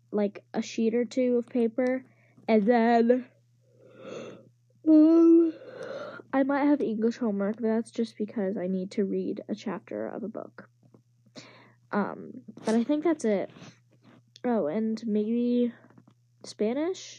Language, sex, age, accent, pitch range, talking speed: English, female, 10-29, American, 185-240 Hz, 135 wpm